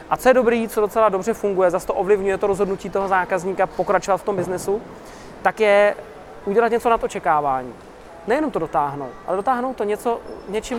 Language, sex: Czech, male